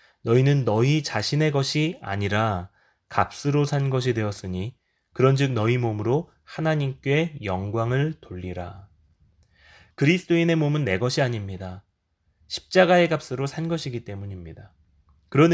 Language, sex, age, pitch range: Korean, male, 20-39, 95-140 Hz